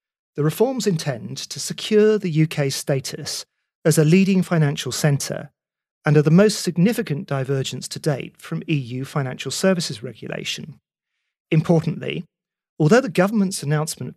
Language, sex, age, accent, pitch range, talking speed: English, male, 40-59, British, 135-175 Hz, 130 wpm